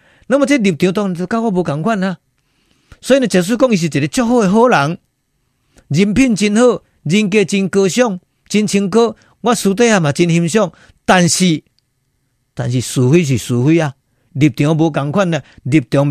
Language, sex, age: Chinese, male, 50-69